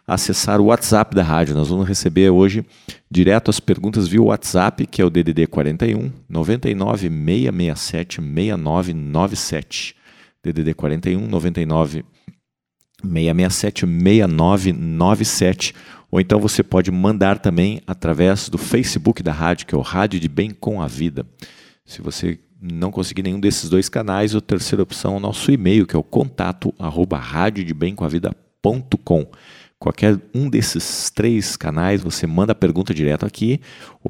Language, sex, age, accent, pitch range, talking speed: Portuguese, male, 40-59, Brazilian, 85-105 Hz, 145 wpm